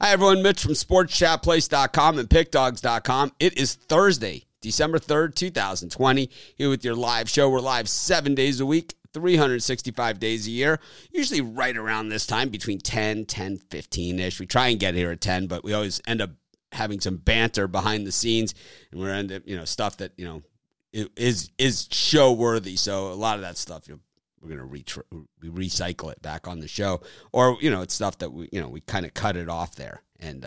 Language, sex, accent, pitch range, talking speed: English, male, American, 90-125 Hz, 205 wpm